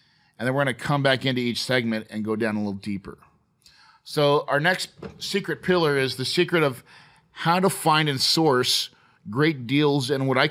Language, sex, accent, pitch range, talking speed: English, male, American, 115-145 Hz, 200 wpm